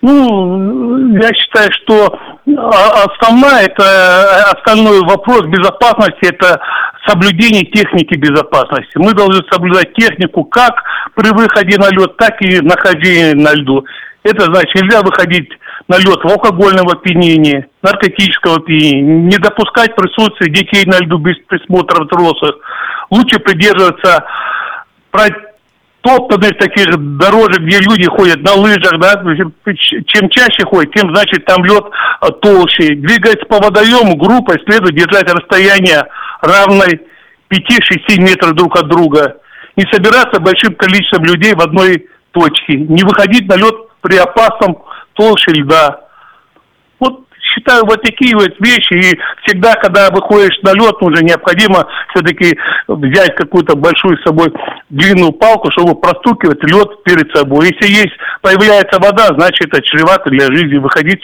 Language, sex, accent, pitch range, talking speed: Russian, male, native, 170-215 Hz, 130 wpm